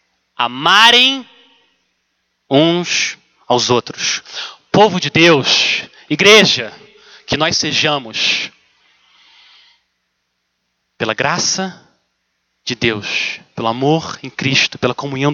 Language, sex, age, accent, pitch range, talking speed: Portuguese, male, 30-49, Brazilian, 130-205 Hz, 80 wpm